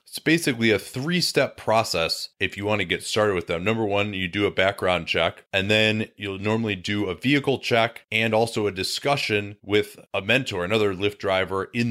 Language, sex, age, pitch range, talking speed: English, male, 30-49, 100-115 Hz, 195 wpm